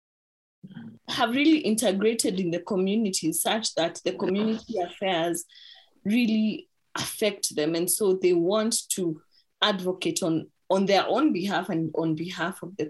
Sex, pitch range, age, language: female, 165-225 Hz, 20-39, English